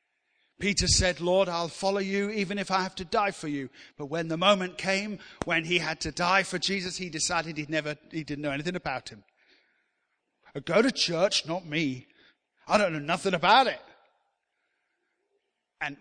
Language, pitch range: English, 135-195 Hz